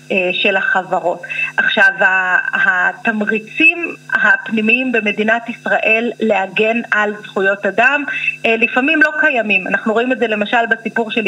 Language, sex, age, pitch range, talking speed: Hebrew, female, 30-49, 210-260 Hz, 110 wpm